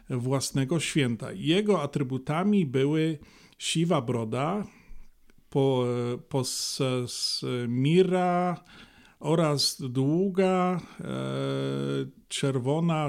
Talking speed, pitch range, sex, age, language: 60 wpm, 130-170 Hz, male, 40-59, Polish